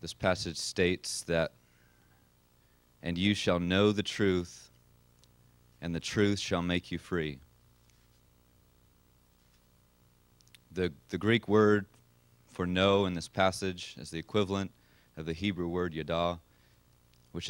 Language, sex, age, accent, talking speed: English, male, 30-49, American, 120 wpm